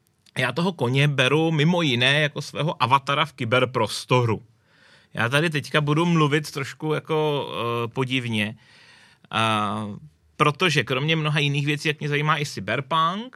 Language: Czech